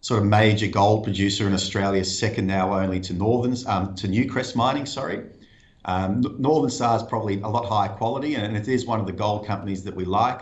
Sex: male